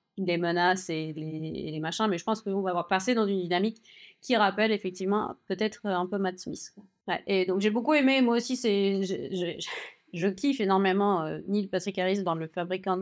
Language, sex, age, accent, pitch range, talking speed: French, female, 30-49, French, 180-230 Hz, 205 wpm